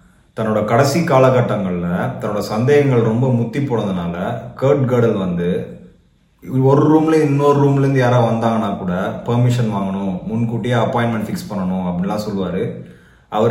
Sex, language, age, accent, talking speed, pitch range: male, Tamil, 20-39, native, 115 wpm, 105-130 Hz